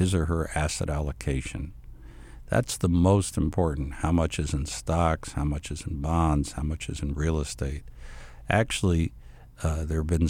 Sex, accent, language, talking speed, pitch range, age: male, American, English, 175 wpm, 75-90 Hz, 60-79